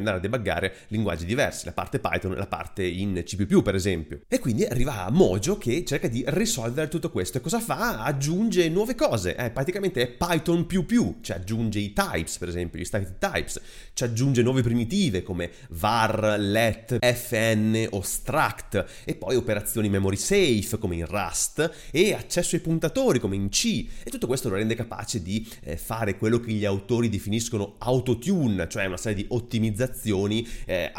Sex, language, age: male, Italian, 30-49